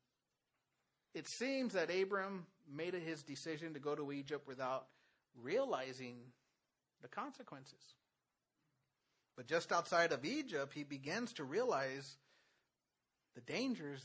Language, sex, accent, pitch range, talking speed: English, male, American, 145-215 Hz, 110 wpm